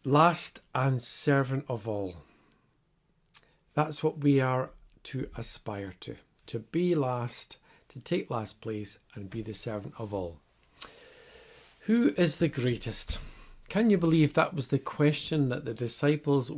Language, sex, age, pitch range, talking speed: English, male, 60-79, 115-145 Hz, 140 wpm